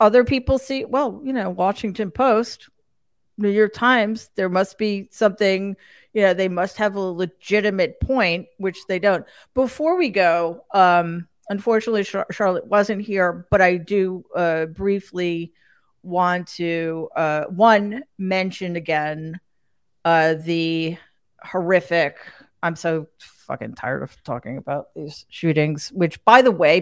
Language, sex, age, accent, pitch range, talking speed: English, female, 40-59, American, 170-210 Hz, 135 wpm